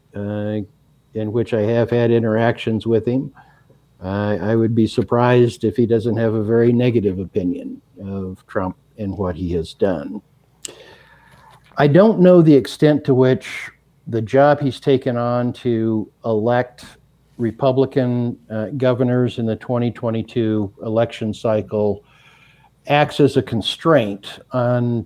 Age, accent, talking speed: 60-79, American, 135 wpm